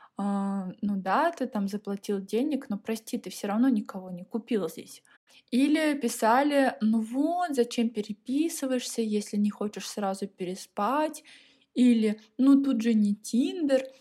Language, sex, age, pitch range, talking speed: Russian, female, 20-39, 205-260 Hz, 140 wpm